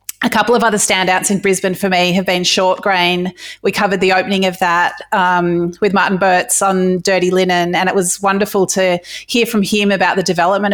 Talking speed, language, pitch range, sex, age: 205 wpm, English, 180-210 Hz, female, 30-49